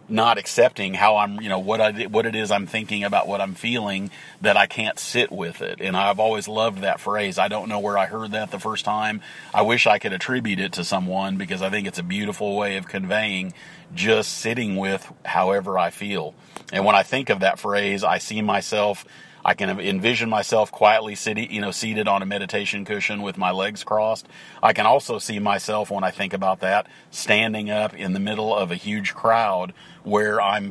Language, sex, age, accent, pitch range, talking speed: English, male, 40-59, American, 95-110 Hz, 215 wpm